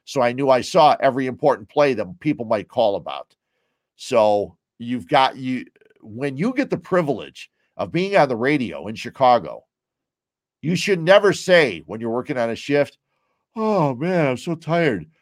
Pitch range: 110-145 Hz